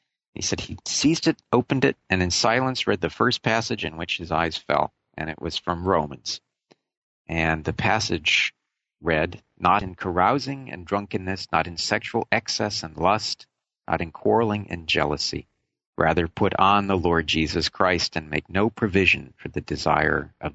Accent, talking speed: American, 170 wpm